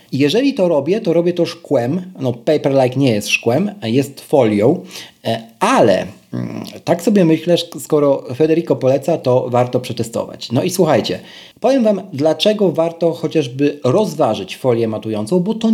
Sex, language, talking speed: male, Polish, 145 wpm